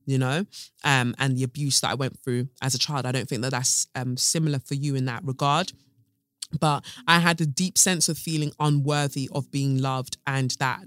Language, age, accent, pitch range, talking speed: English, 20-39, British, 130-160 Hz, 215 wpm